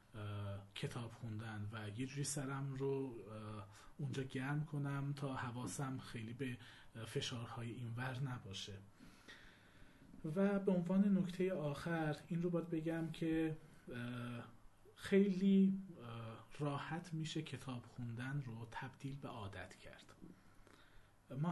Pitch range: 115-145 Hz